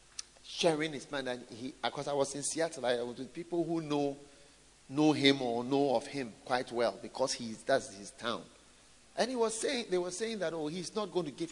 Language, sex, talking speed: English, male, 225 wpm